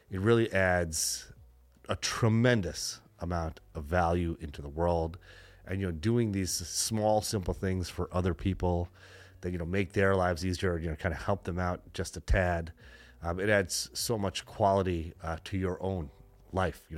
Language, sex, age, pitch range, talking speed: English, male, 30-49, 80-95 Hz, 180 wpm